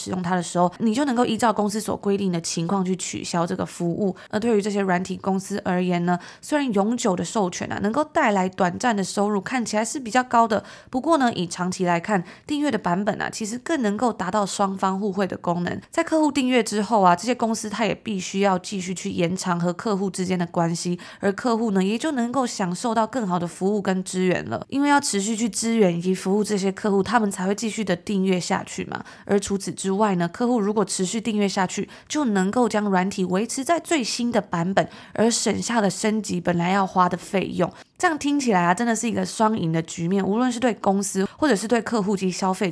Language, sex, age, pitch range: Chinese, female, 20-39, 185-225 Hz